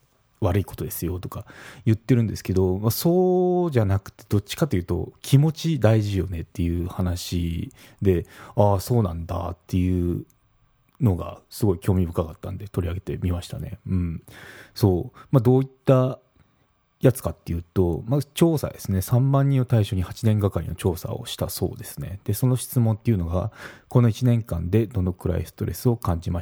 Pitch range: 90-120 Hz